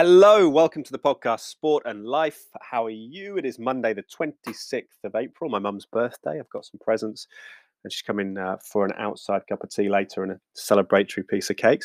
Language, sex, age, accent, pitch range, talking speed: English, male, 20-39, British, 100-115 Hz, 210 wpm